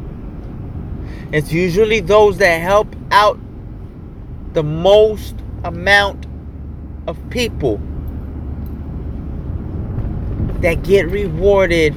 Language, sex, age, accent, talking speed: English, male, 30-49, American, 70 wpm